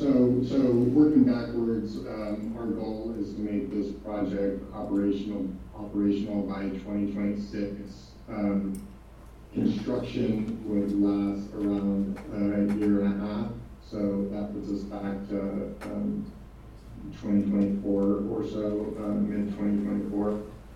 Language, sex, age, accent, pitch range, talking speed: English, male, 40-59, American, 100-105 Hz, 120 wpm